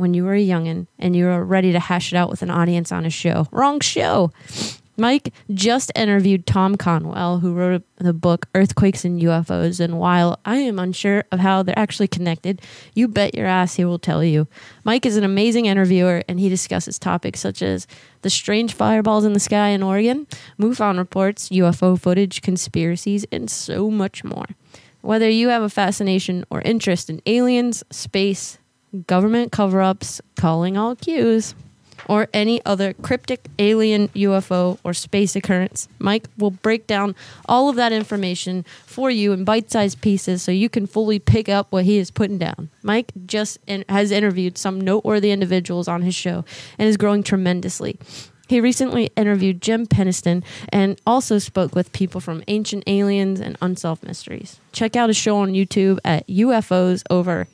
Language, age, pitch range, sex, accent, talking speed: English, 20-39, 180-210 Hz, female, American, 175 wpm